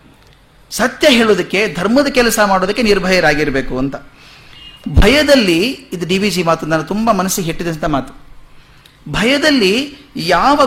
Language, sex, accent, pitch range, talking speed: Kannada, male, native, 145-225 Hz, 100 wpm